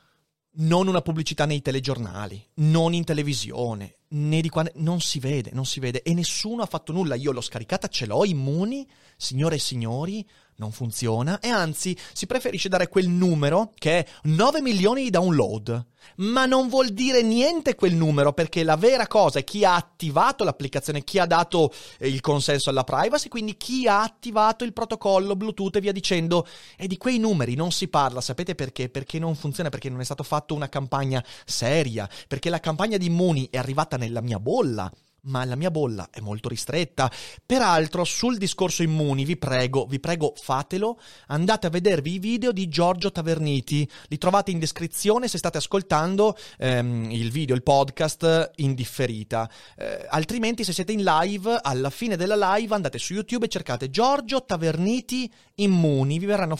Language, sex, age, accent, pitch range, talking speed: Italian, male, 30-49, native, 135-195 Hz, 175 wpm